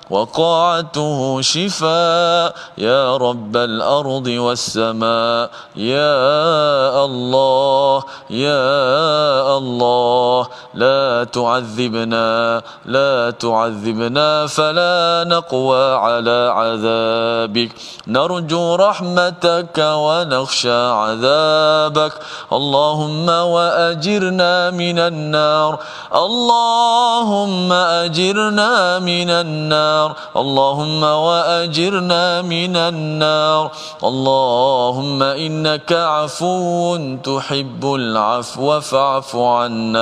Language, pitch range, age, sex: Malayalam, 120-170 Hz, 30-49, male